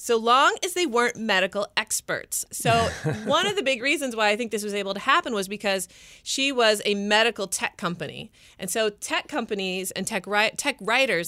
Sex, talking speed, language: female, 195 wpm, English